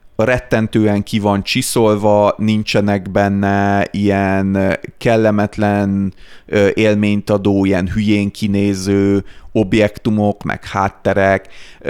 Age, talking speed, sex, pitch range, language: 30-49, 80 wpm, male, 100-115 Hz, Hungarian